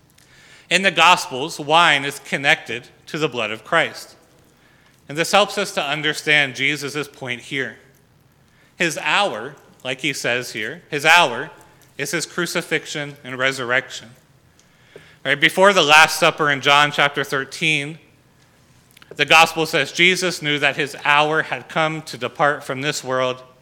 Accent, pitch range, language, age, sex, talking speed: American, 130-165 Hz, English, 30-49, male, 140 wpm